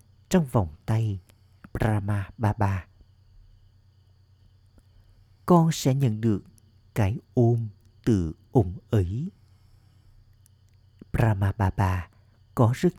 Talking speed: 85 wpm